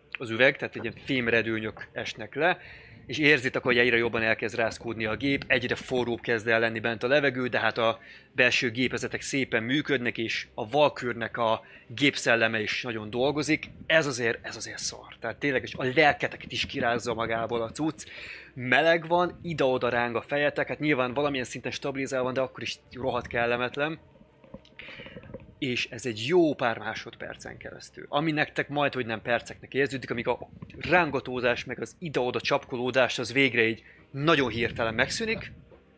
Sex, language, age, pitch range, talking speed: male, Hungarian, 20-39, 115-140 Hz, 160 wpm